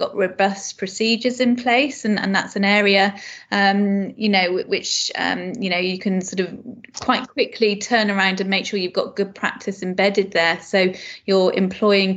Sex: female